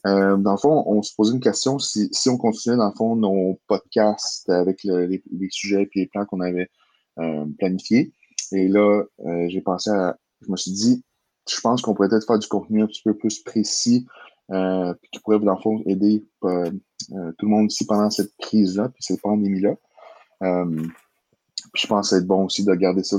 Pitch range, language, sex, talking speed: 90-105 Hz, French, male, 215 wpm